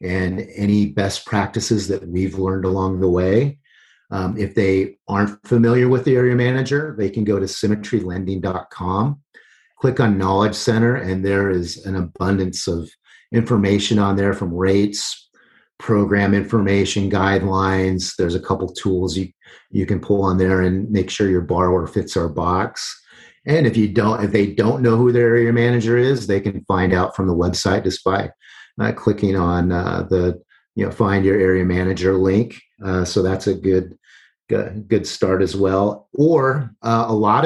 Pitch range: 95-105 Hz